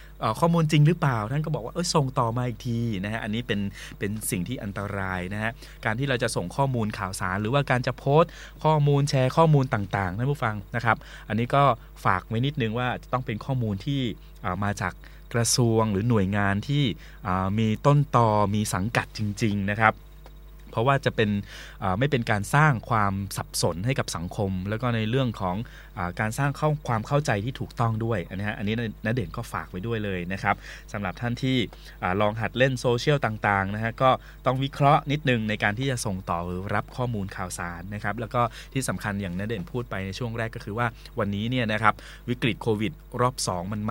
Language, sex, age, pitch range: Thai, male, 20-39, 100-130 Hz